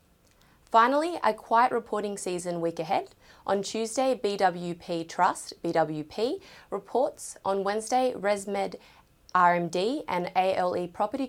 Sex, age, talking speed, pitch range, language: female, 20-39, 105 wpm, 180-240 Hz, English